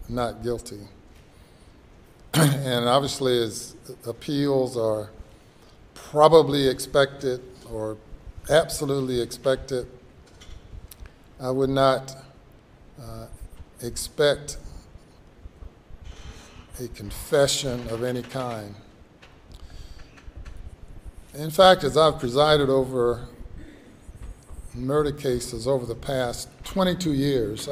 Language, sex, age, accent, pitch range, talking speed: English, male, 50-69, American, 100-140 Hz, 75 wpm